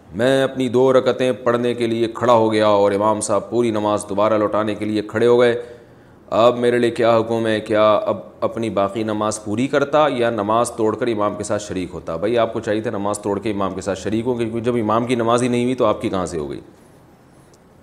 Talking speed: 240 wpm